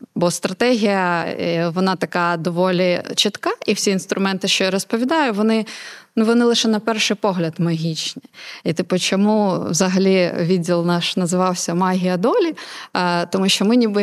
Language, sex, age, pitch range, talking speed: Ukrainian, female, 20-39, 180-220 Hz, 140 wpm